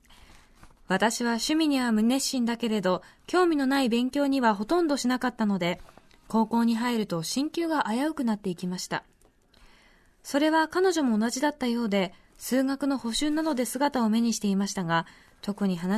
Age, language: 20-39, Japanese